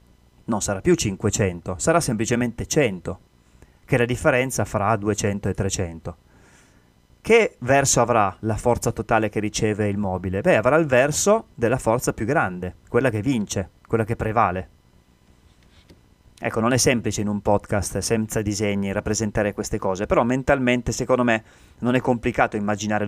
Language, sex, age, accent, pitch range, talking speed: Italian, male, 30-49, native, 100-120 Hz, 150 wpm